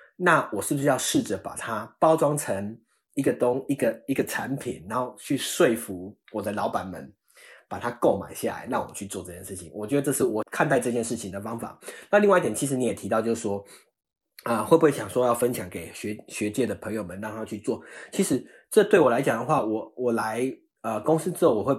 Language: Chinese